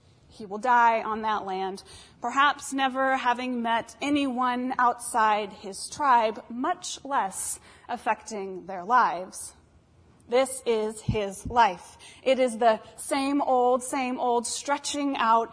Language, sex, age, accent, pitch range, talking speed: English, female, 30-49, American, 235-305 Hz, 125 wpm